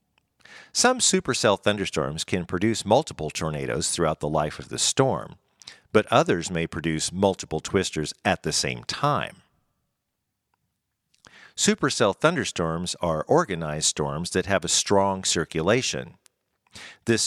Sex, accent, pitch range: male, American, 80-115 Hz